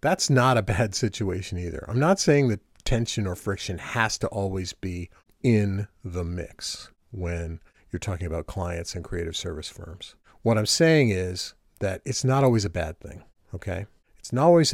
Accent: American